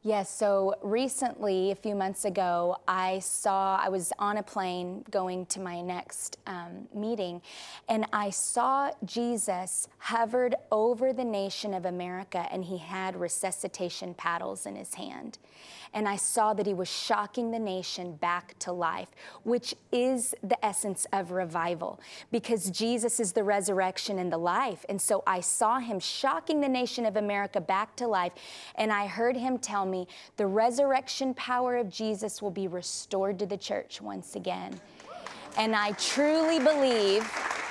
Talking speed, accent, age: 160 wpm, American, 20-39